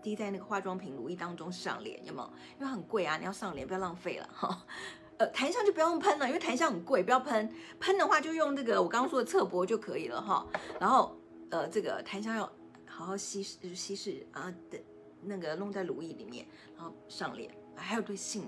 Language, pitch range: Chinese, 180-255 Hz